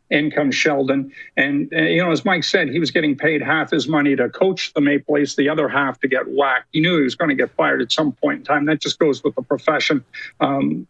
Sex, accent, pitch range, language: male, American, 140-170 Hz, English